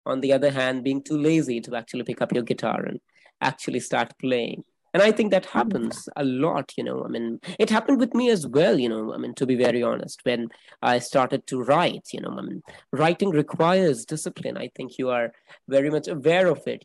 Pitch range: 135-175 Hz